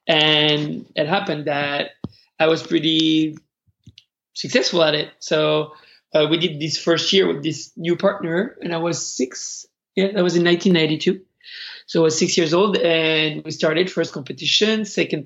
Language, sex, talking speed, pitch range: English, male, 165 wpm, 150-180 Hz